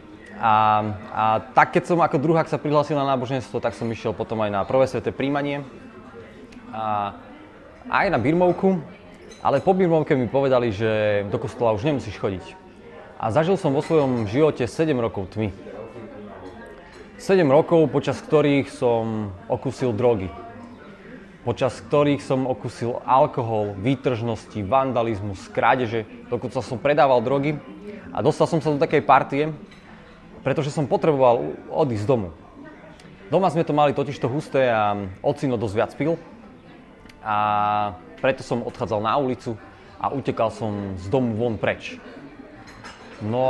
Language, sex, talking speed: Slovak, male, 140 wpm